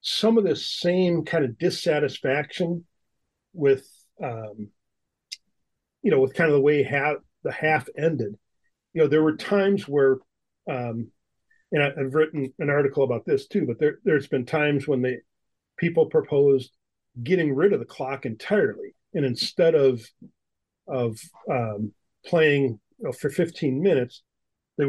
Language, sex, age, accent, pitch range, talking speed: English, male, 50-69, American, 130-170 Hz, 150 wpm